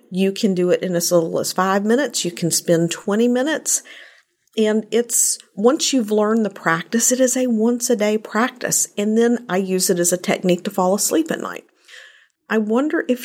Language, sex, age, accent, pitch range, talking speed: English, female, 50-69, American, 180-235 Hz, 205 wpm